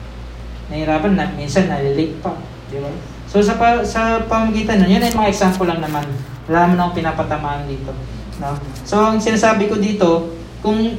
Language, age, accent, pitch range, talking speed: Filipino, 20-39, native, 150-190 Hz, 175 wpm